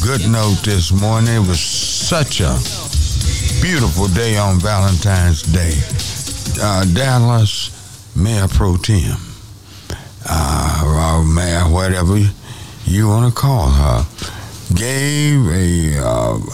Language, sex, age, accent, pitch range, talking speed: English, male, 60-79, American, 90-115 Hz, 115 wpm